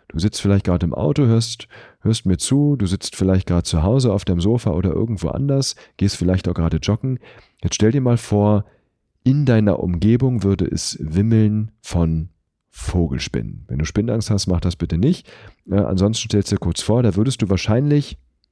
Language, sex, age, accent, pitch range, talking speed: German, male, 40-59, German, 85-120 Hz, 190 wpm